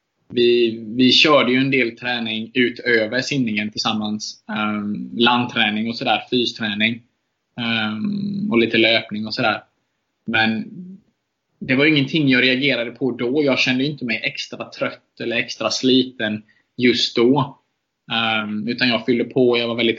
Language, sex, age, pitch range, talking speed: Swedish, male, 20-39, 110-130 Hz, 145 wpm